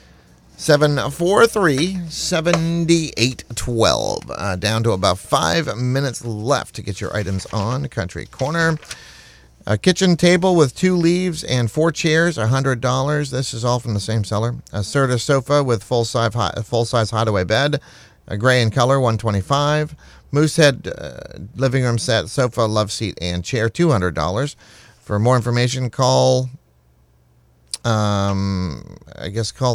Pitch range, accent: 100-140 Hz, American